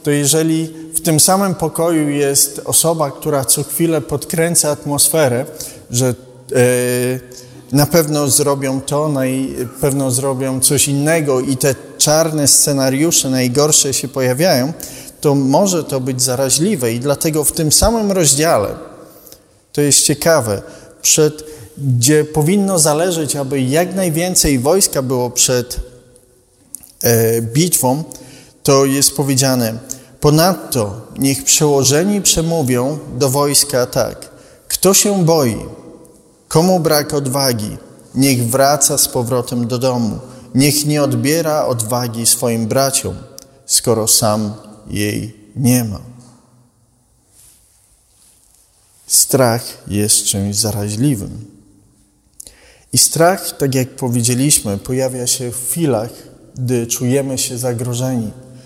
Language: Polish